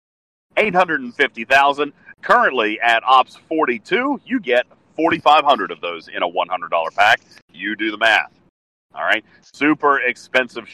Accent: American